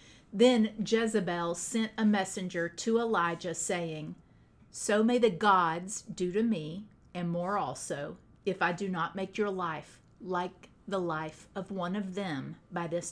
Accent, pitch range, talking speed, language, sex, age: American, 175-210 Hz, 155 wpm, English, female, 40-59